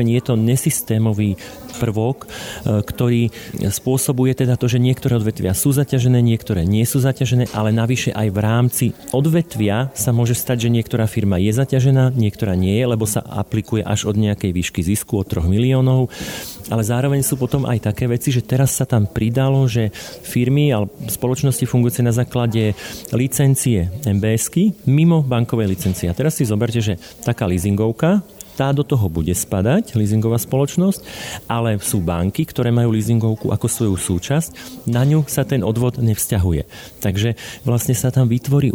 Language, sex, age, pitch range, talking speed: Slovak, male, 40-59, 110-130 Hz, 160 wpm